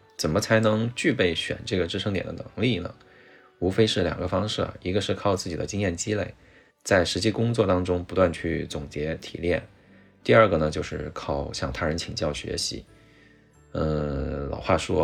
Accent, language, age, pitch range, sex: native, Chinese, 20-39, 80-105 Hz, male